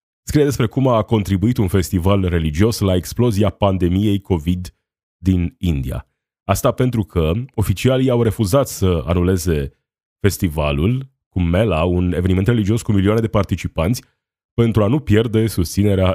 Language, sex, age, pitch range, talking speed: Romanian, male, 30-49, 90-110 Hz, 140 wpm